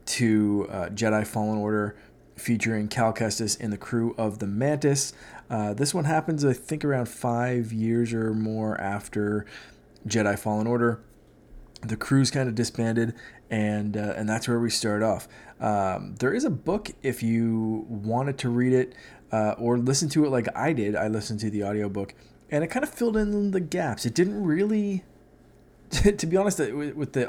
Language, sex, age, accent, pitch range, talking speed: English, male, 20-39, American, 110-130 Hz, 180 wpm